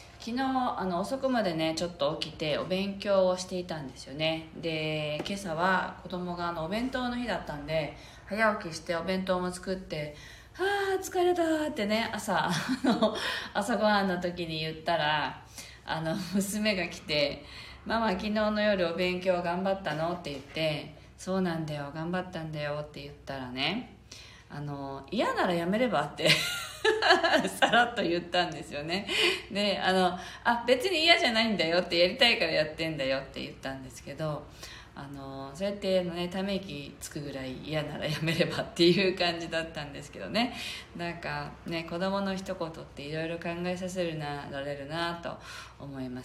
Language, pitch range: Japanese, 150-200 Hz